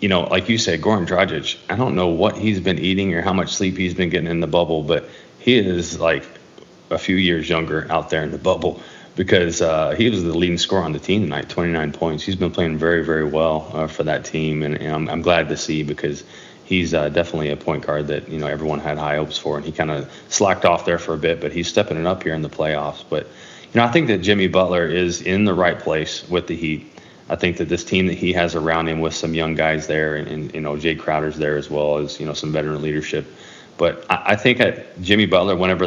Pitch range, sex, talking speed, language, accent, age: 75-90 Hz, male, 260 wpm, English, American, 20-39